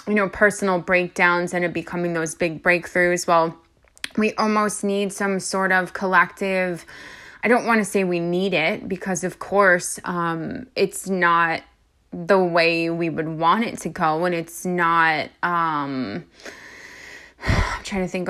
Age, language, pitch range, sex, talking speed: 20-39, English, 175-195 Hz, female, 155 wpm